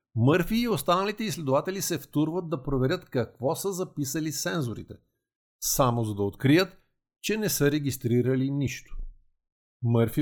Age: 50-69